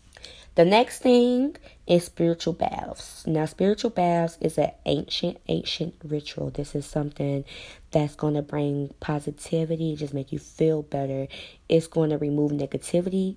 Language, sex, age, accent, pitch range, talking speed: English, female, 20-39, American, 145-165 Hz, 145 wpm